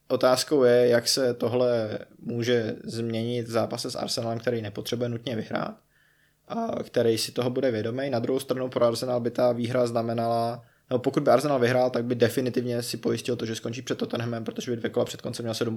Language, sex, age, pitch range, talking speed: Czech, male, 20-39, 115-130 Hz, 200 wpm